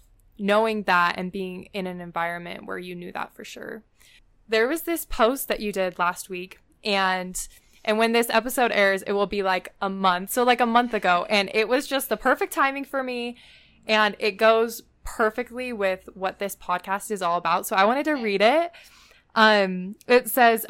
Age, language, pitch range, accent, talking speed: 20-39, English, 190-225 Hz, American, 195 wpm